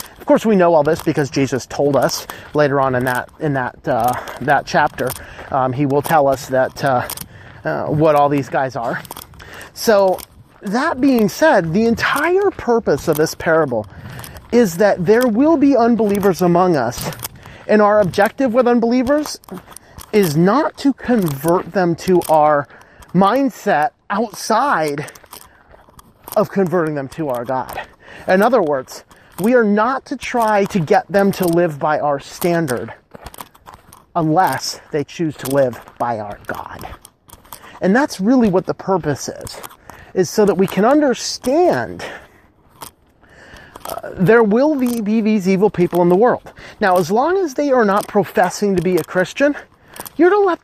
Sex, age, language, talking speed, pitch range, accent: male, 30-49, English, 160 wpm, 160-240 Hz, American